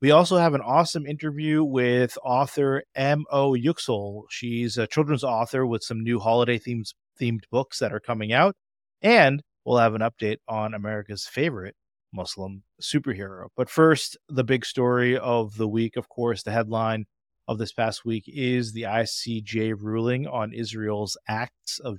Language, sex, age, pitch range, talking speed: English, male, 30-49, 110-130 Hz, 160 wpm